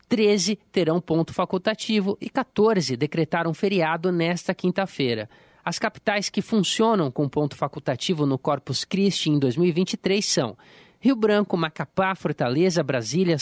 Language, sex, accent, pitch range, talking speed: Portuguese, male, Brazilian, 155-205 Hz, 125 wpm